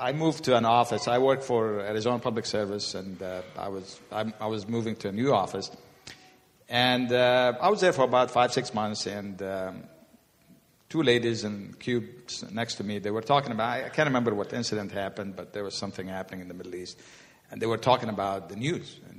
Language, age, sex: English, 50-69, male